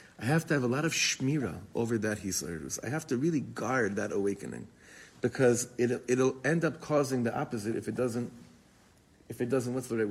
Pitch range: 110-145 Hz